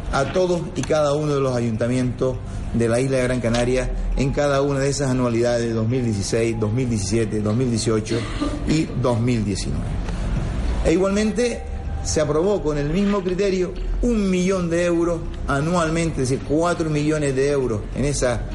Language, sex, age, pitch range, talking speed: Spanish, male, 40-59, 110-155 Hz, 150 wpm